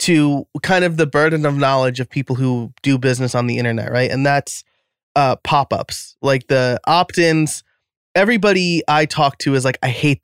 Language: English